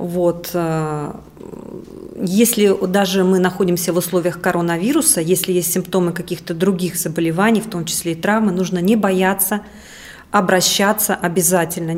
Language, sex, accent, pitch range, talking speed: Russian, female, native, 180-215 Hz, 120 wpm